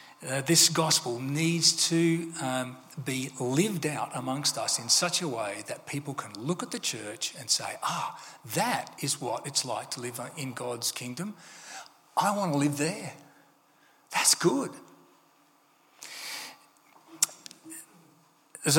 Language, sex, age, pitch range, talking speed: English, male, 40-59, 125-165 Hz, 140 wpm